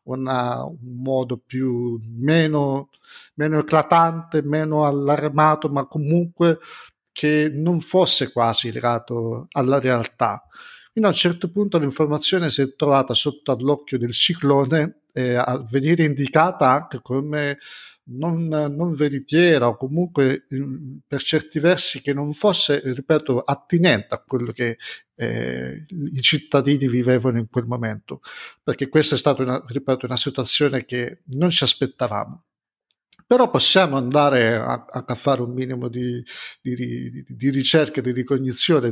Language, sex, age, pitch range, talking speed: Italian, male, 50-69, 125-155 Hz, 130 wpm